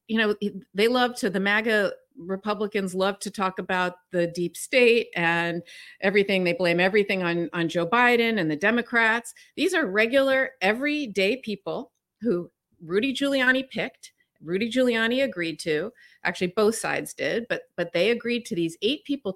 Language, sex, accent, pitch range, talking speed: English, female, American, 180-240 Hz, 160 wpm